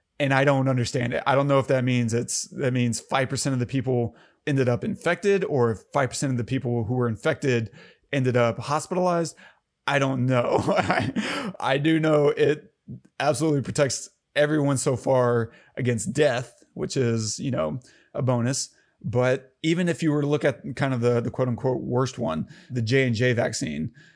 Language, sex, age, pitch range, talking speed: English, male, 30-49, 120-150 Hz, 180 wpm